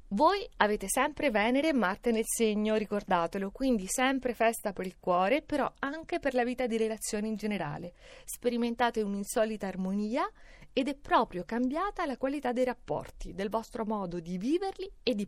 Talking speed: 165 wpm